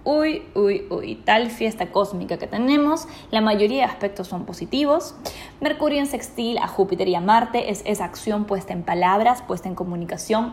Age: 20-39